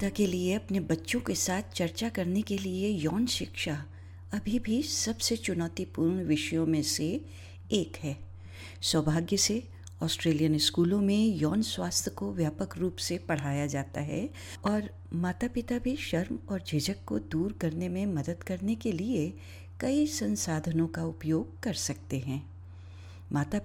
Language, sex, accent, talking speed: Hindi, female, native, 145 wpm